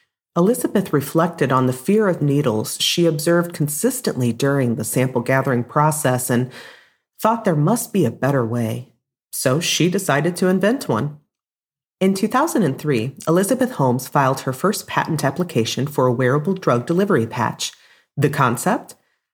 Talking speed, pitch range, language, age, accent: 145 wpm, 135-185 Hz, English, 40-59, American